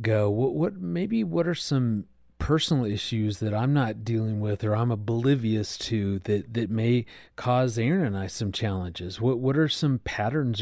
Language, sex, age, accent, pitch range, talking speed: English, male, 30-49, American, 105-130 Hz, 180 wpm